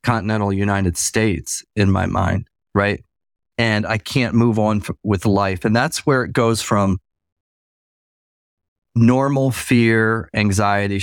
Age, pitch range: 40-59, 95-115 Hz